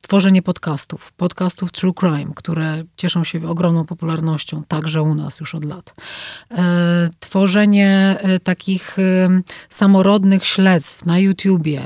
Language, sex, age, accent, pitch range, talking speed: Polish, female, 30-49, native, 170-195 Hz, 110 wpm